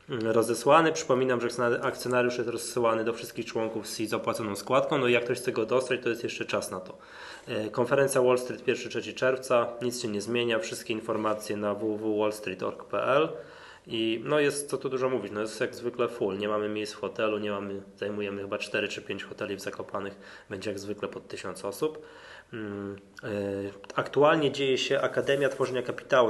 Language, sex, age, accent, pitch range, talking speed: Polish, male, 20-39, native, 105-130 Hz, 175 wpm